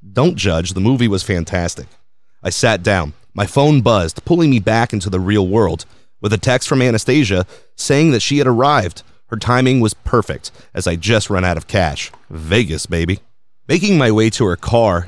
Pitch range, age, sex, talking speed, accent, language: 95-120 Hz, 30-49, male, 190 wpm, American, English